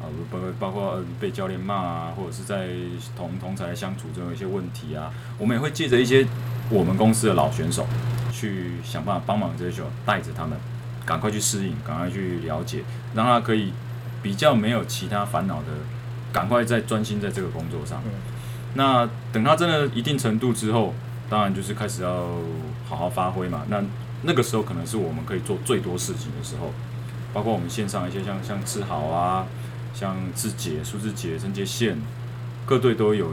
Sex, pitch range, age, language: male, 105-120 Hz, 20-39, Chinese